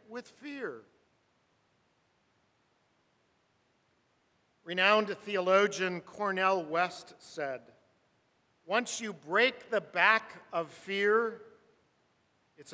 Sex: male